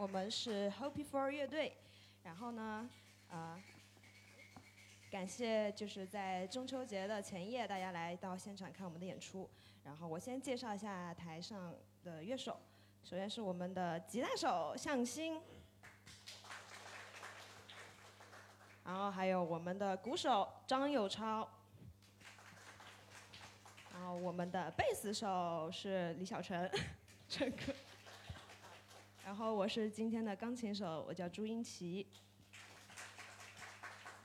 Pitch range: 125-205 Hz